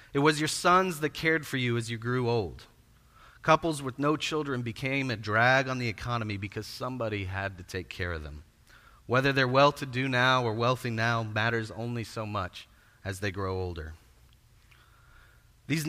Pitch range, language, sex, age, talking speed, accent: 110-150 Hz, English, male, 30-49, 180 wpm, American